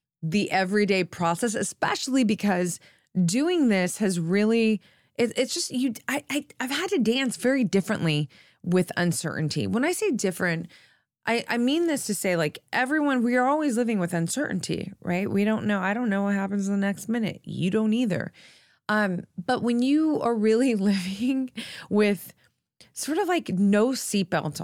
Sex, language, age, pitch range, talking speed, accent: female, English, 20-39, 170-230 Hz, 165 wpm, American